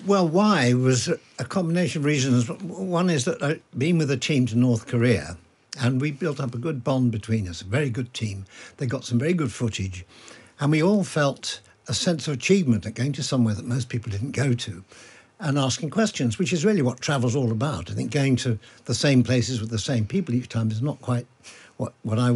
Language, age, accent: English, 60-79, British